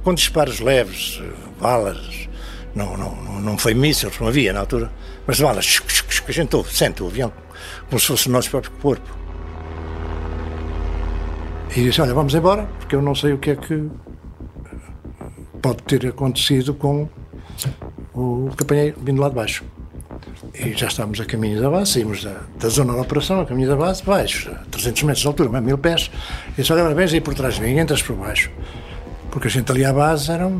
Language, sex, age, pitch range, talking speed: Portuguese, male, 60-79, 100-145 Hz, 190 wpm